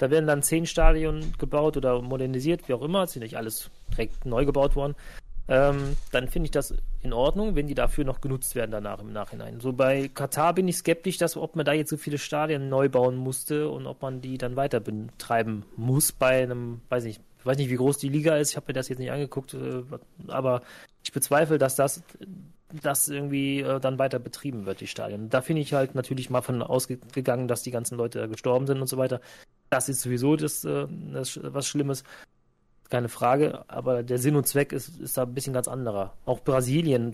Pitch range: 120-145 Hz